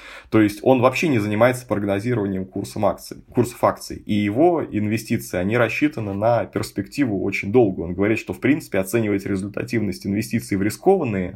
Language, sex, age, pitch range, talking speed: Russian, male, 20-39, 100-125 Hz, 150 wpm